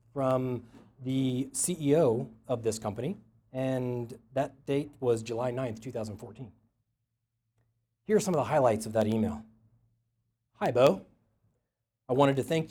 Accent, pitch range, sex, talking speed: American, 115-135 Hz, male, 130 wpm